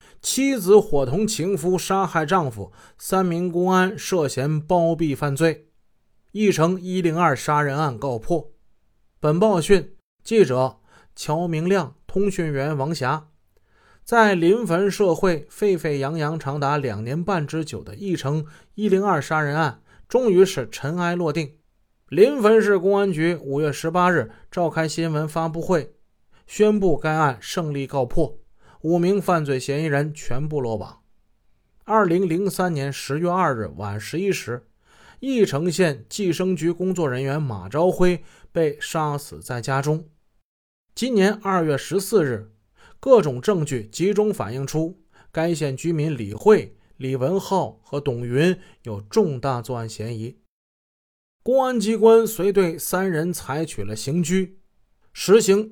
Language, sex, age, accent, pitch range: Chinese, male, 20-39, native, 140-190 Hz